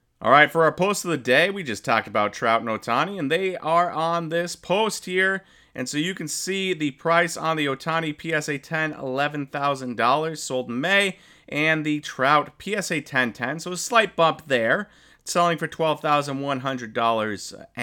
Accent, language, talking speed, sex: American, English, 180 wpm, male